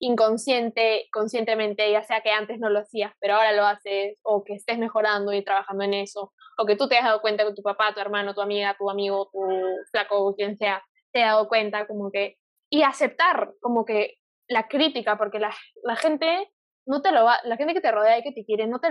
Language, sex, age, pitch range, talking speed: Spanish, female, 10-29, 210-275 Hz, 230 wpm